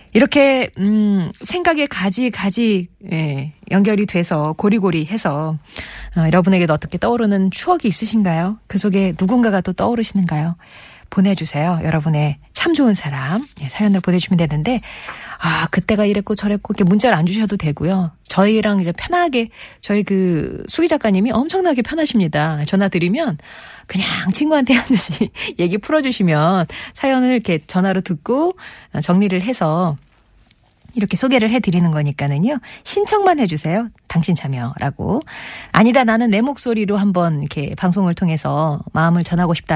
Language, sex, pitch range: Korean, female, 165-225 Hz